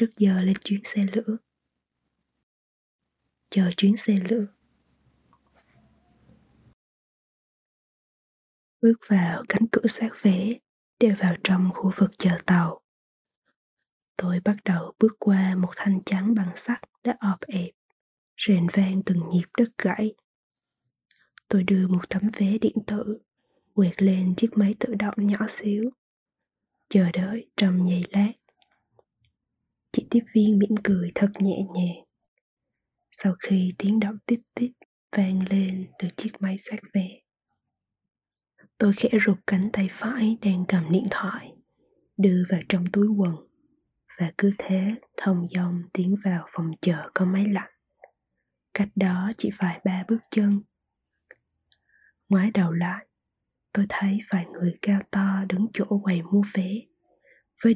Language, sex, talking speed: Vietnamese, female, 135 wpm